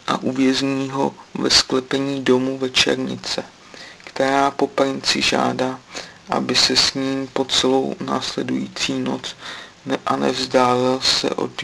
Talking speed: 120 wpm